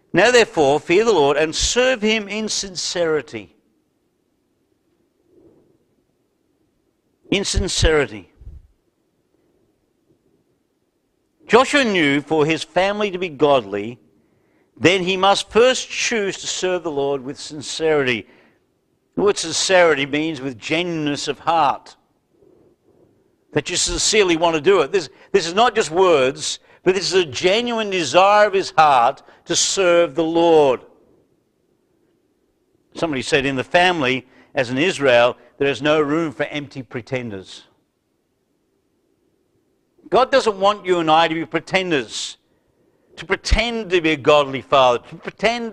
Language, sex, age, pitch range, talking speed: English, male, 60-79, 150-235 Hz, 130 wpm